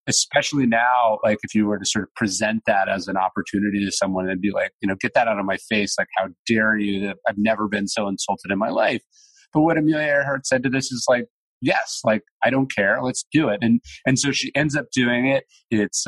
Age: 30-49